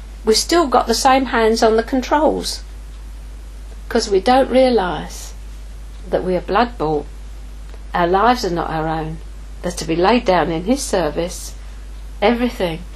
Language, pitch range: English, 155-245 Hz